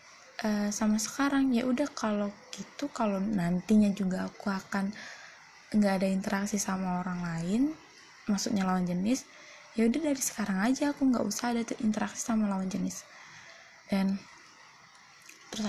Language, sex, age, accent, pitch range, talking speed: Indonesian, female, 20-39, native, 200-250 Hz, 135 wpm